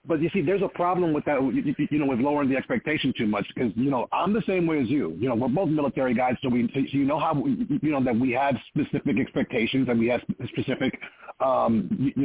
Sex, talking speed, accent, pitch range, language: male, 250 wpm, American, 145-230 Hz, English